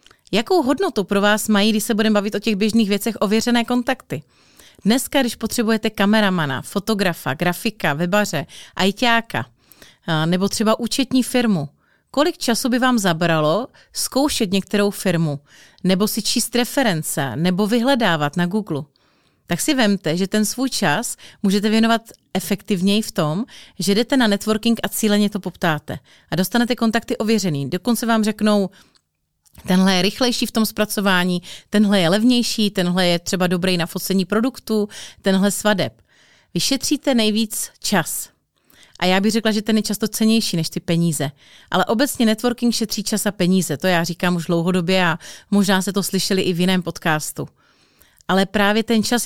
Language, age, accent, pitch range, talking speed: Czech, 30-49, native, 185-225 Hz, 155 wpm